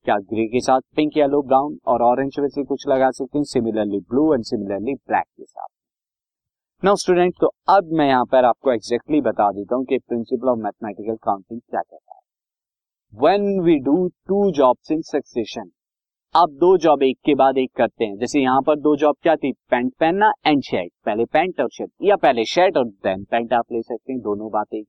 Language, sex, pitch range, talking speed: Hindi, male, 130-165 Hz, 195 wpm